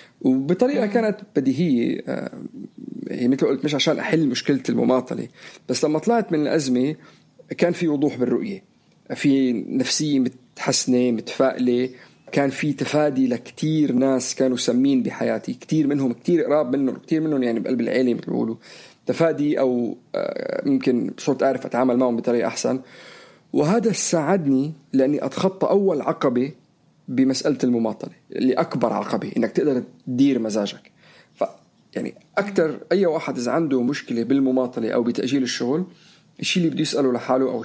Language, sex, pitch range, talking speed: Arabic, male, 125-160 Hz, 135 wpm